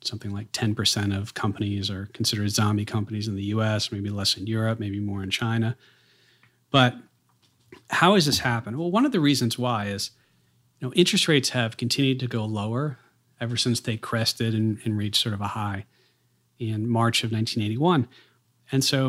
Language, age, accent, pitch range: English, 40-59, American, 110-130 Hz